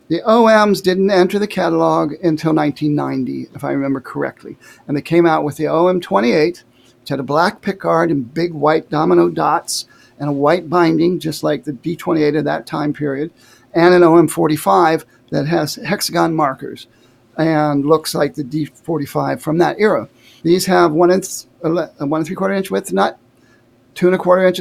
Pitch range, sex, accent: 140-180 Hz, male, American